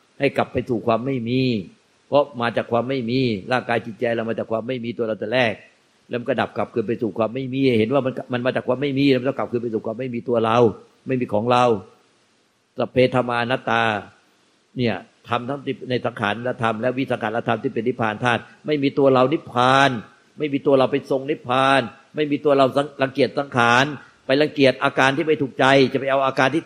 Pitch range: 125-145 Hz